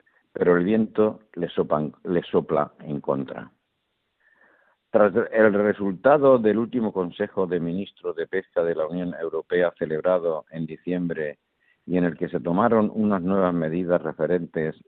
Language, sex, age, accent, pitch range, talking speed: Spanish, male, 50-69, Spanish, 85-110 Hz, 140 wpm